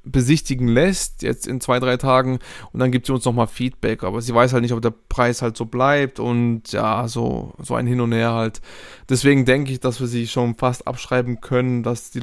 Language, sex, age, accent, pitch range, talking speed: German, male, 20-39, German, 120-140 Hz, 225 wpm